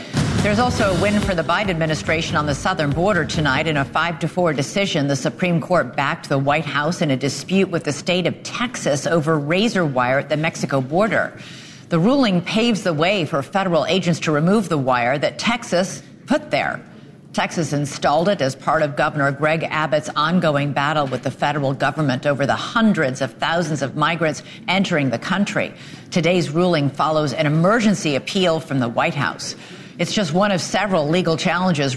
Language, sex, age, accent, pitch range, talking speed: English, female, 50-69, American, 150-195 Hz, 180 wpm